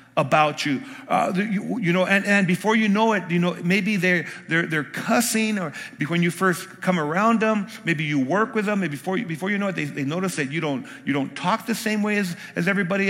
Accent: American